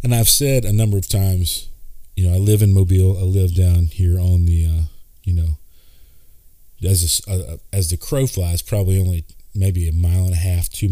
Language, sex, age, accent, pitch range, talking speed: English, male, 40-59, American, 80-95 Hz, 210 wpm